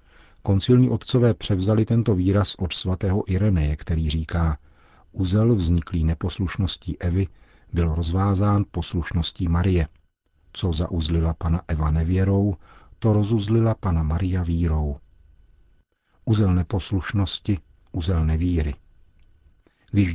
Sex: male